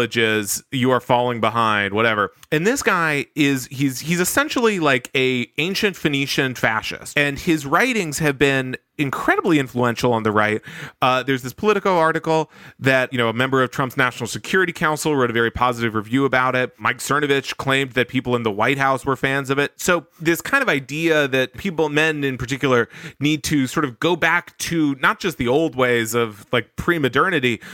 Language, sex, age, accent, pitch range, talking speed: English, male, 30-49, American, 125-160 Hz, 190 wpm